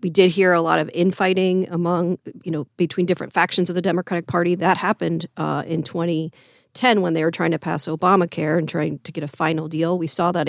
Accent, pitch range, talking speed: American, 170-205 Hz, 225 wpm